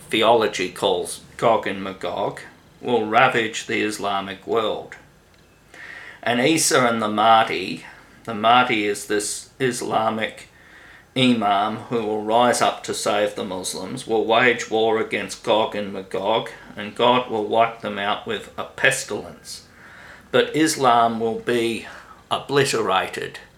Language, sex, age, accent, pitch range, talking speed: English, male, 50-69, Australian, 105-125 Hz, 125 wpm